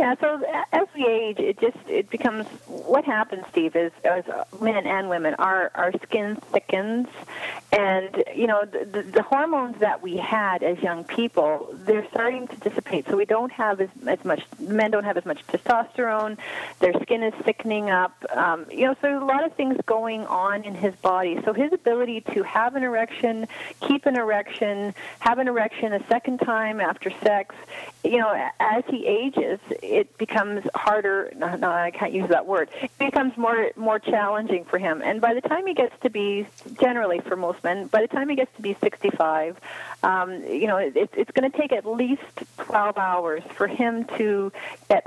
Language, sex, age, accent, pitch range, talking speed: English, female, 30-49, American, 195-250 Hz, 195 wpm